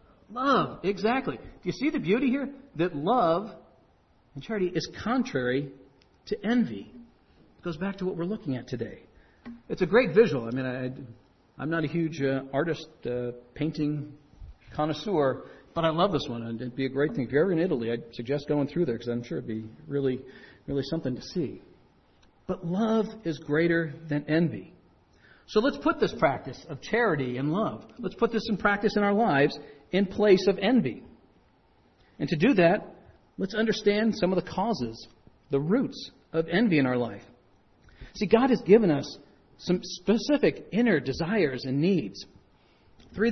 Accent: American